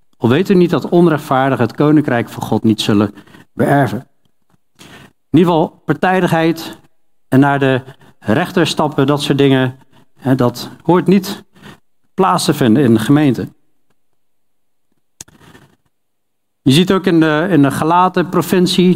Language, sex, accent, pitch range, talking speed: Dutch, male, Dutch, 125-170 Hz, 135 wpm